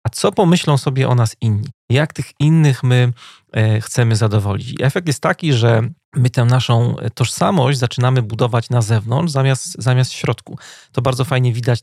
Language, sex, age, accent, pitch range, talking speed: Polish, male, 40-59, native, 115-135 Hz, 170 wpm